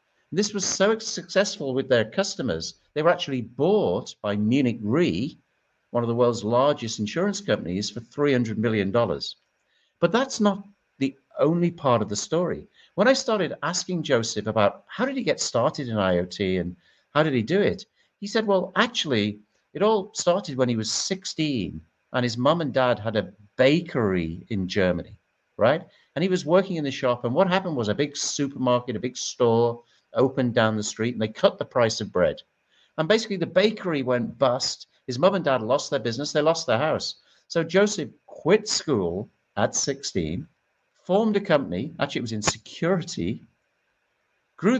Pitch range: 120-185 Hz